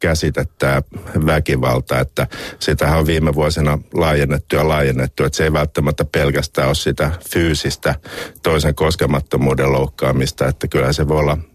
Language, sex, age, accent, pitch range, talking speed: Finnish, male, 50-69, native, 65-80 Hz, 135 wpm